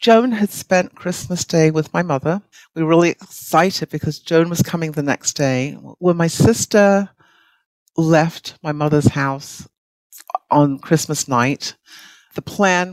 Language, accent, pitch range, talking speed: English, British, 135-170 Hz, 145 wpm